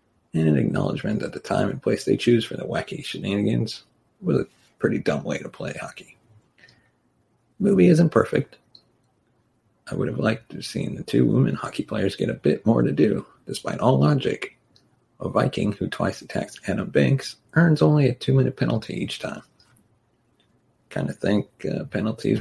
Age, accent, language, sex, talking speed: 40-59, American, English, male, 175 wpm